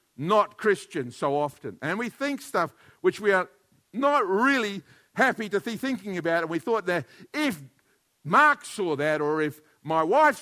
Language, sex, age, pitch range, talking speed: English, male, 50-69, 150-205 Hz, 175 wpm